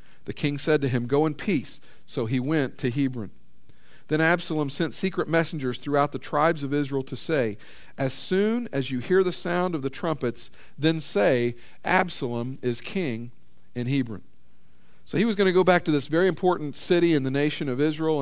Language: English